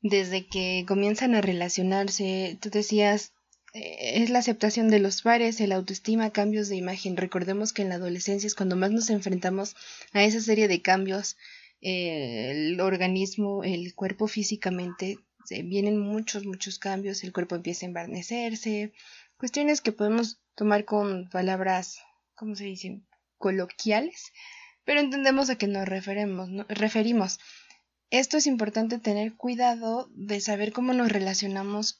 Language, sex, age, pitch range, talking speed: Spanish, female, 20-39, 190-230 Hz, 145 wpm